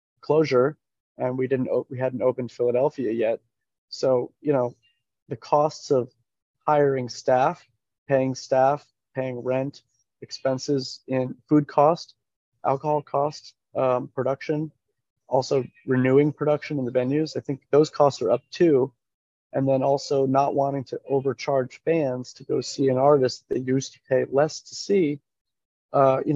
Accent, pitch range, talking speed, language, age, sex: American, 125-145 Hz, 145 wpm, English, 30-49, male